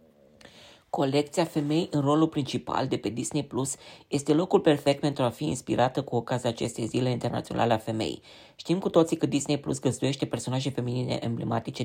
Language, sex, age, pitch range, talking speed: Romanian, female, 20-39, 120-155 Hz, 165 wpm